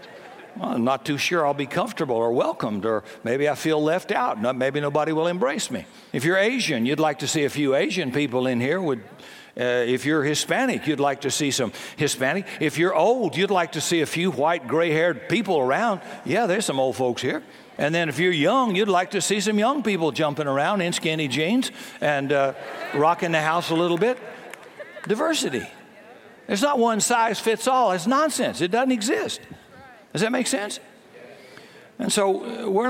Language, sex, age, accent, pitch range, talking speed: English, male, 60-79, American, 150-205 Hz, 195 wpm